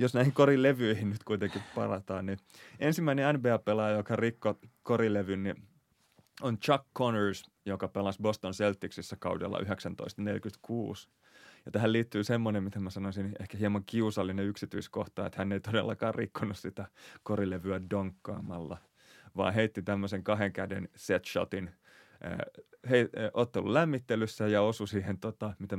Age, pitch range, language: 30-49, 95-110 Hz, Finnish